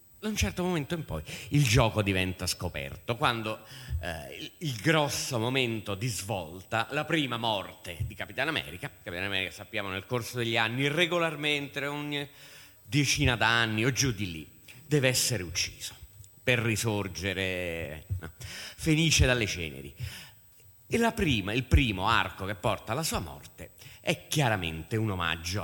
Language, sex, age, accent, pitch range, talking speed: Italian, male, 30-49, native, 100-130 Hz, 145 wpm